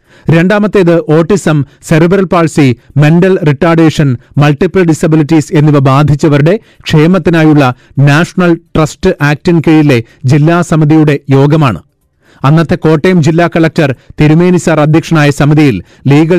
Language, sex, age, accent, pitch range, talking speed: Malayalam, male, 30-49, native, 145-170 Hz, 95 wpm